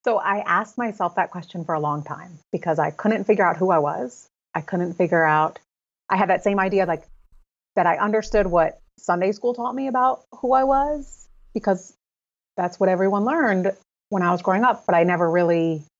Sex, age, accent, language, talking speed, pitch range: female, 30-49, American, English, 205 wpm, 155-210 Hz